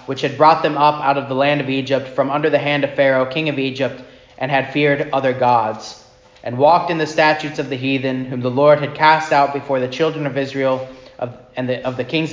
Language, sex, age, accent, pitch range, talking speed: English, male, 30-49, American, 130-150 Hz, 245 wpm